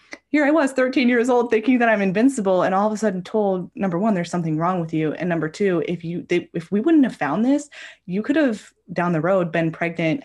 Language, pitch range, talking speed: English, 175-235 Hz, 250 wpm